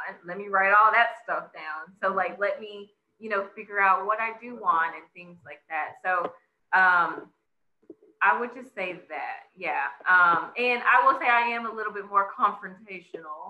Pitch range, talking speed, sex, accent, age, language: 185-235 Hz, 190 wpm, female, American, 20-39, English